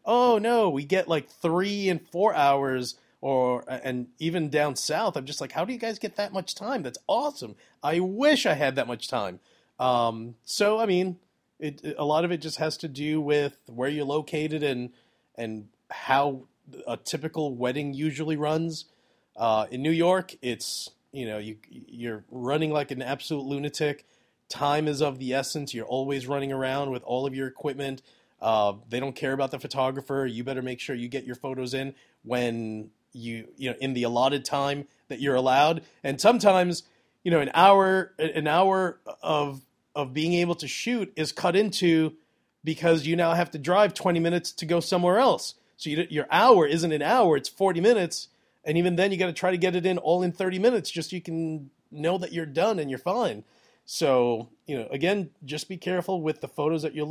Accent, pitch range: American, 135-175 Hz